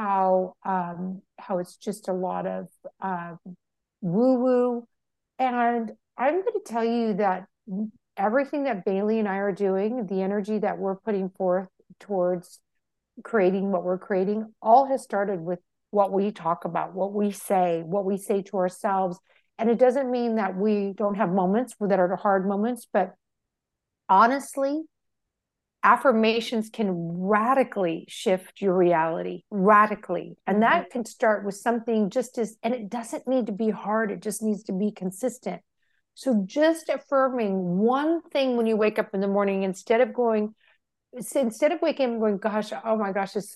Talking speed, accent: 170 wpm, American